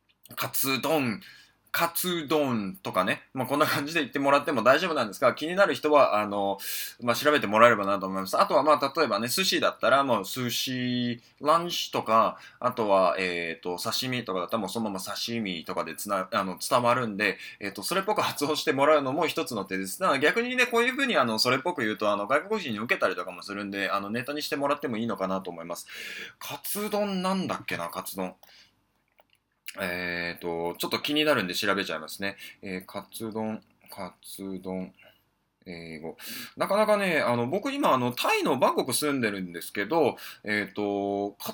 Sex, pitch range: male, 95-150 Hz